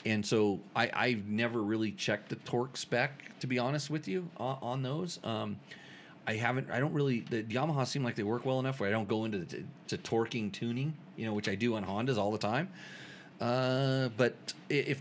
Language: English